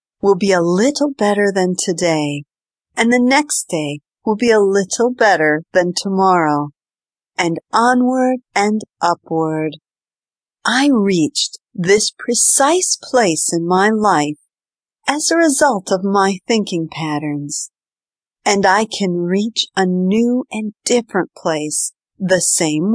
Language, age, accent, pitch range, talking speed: English, 50-69, American, 170-235 Hz, 125 wpm